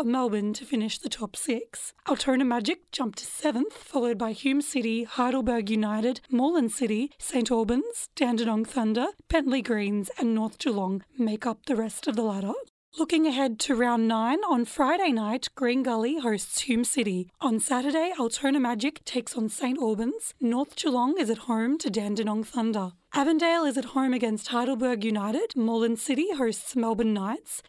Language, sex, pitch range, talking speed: English, female, 230-280 Hz, 165 wpm